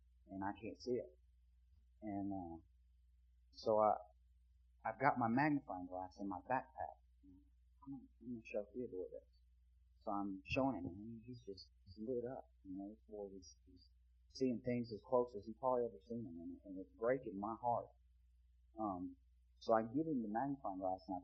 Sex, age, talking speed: male, 30-49, 175 wpm